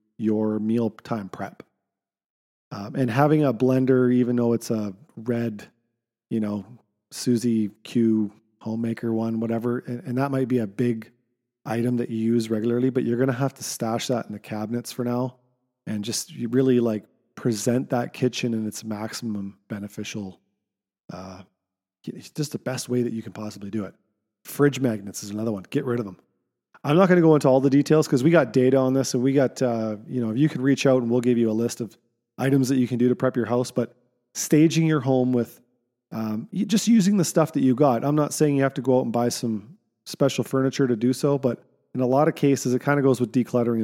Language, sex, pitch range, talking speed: English, male, 110-130 Hz, 220 wpm